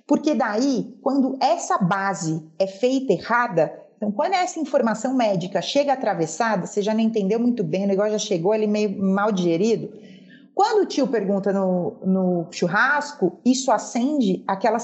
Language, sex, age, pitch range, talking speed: Portuguese, female, 30-49, 205-275 Hz, 160 wpm